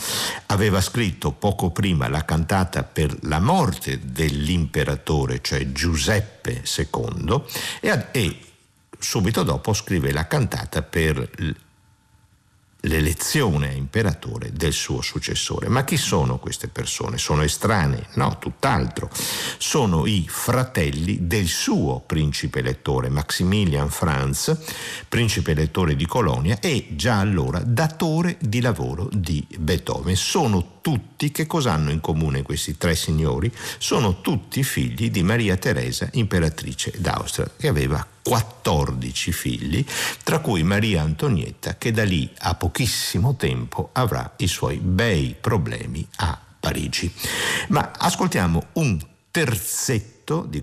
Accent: native